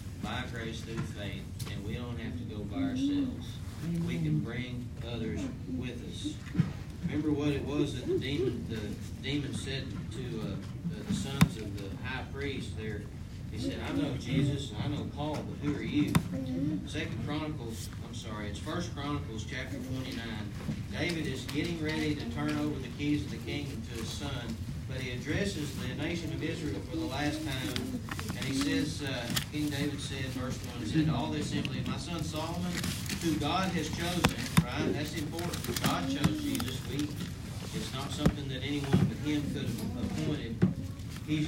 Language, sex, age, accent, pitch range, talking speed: English, male, 40-59, American, 115-150 Hz, 175 wpm